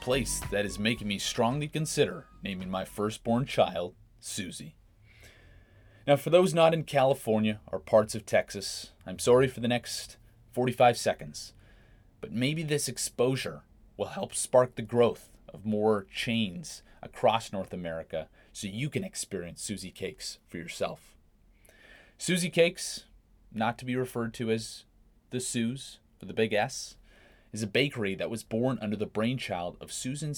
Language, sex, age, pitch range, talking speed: English, male, 30-49, 105-130 Hz, 150 wpm